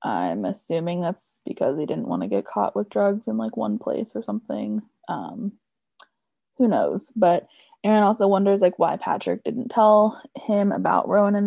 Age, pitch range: 20-39, 190-235 Hz